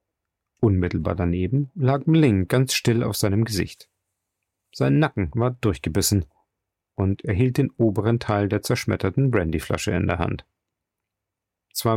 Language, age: German, 40-59